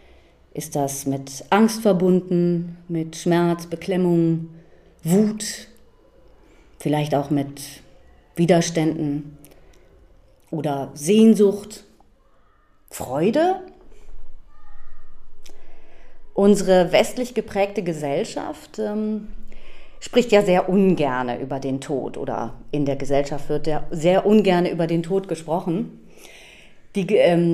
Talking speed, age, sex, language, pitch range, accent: 90 wpm, 30-49, female, German, 155-190 Hz, German